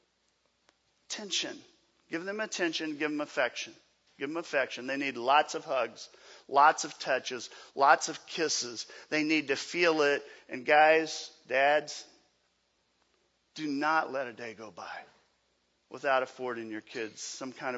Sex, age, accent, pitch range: male, 40-59, American, 135-190 Hz